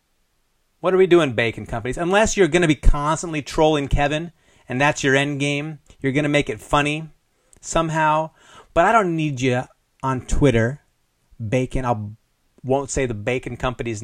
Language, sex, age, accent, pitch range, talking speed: English, male, 30-49, American, 105-145 Hz, 170 wpm